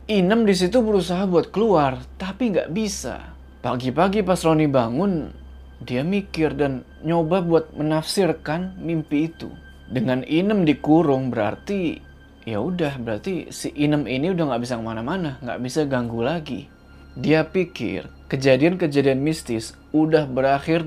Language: Indonesian